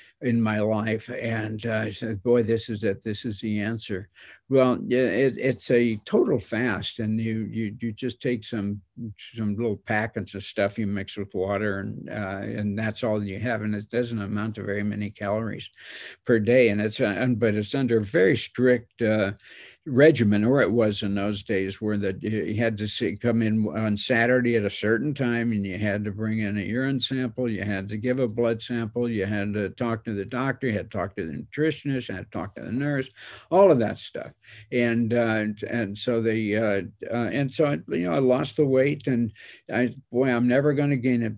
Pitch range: 105-120 Hz